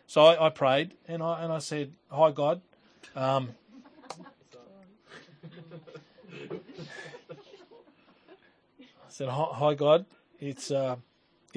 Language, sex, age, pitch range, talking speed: English, male, 40-59, 135-160 Hz, 95 wpm